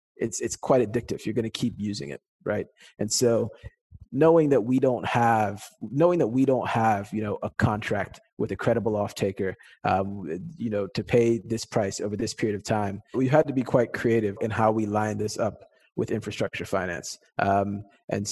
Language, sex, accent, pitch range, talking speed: English, male, American, 105-120 Hz, 195 wpm